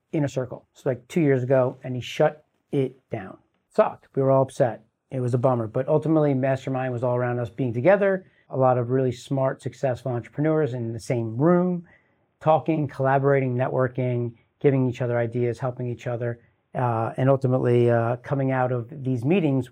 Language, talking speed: English, 190 wpm